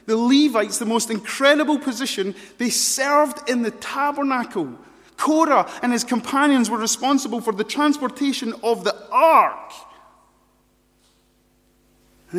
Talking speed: 115 wpm